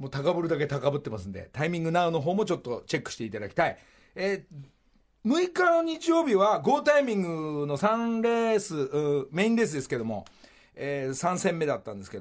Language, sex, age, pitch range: Japanese, male, 40-59, 140-215 Hz